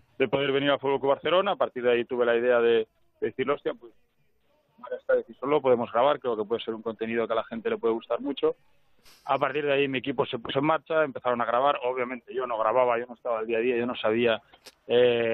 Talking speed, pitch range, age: 255 wpm, 120-140 Hz, 20-39